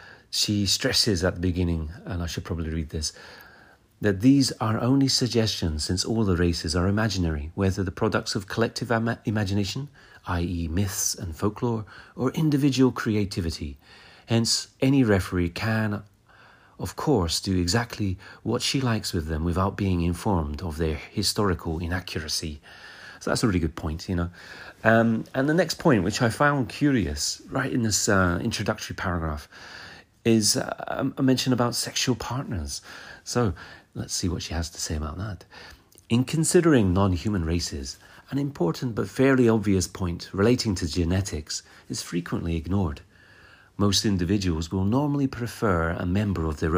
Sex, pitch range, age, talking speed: male, 85-115 Hz, 40-59, 155 wpm